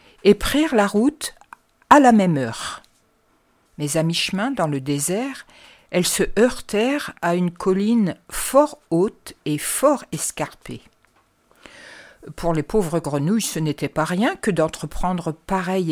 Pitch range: 165-230 Hz